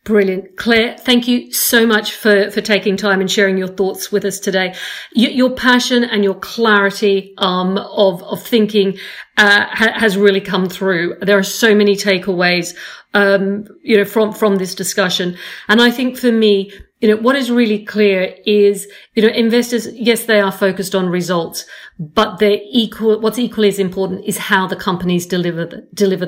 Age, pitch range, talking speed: 50-69, 190-220 Hz, 180 wpm